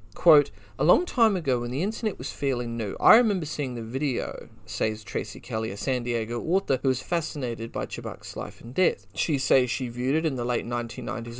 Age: 30-49